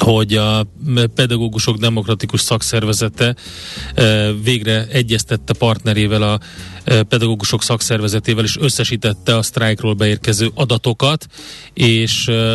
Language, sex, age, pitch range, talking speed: Hungarian, male, 30-49, 110-125 Hz, 85 wpm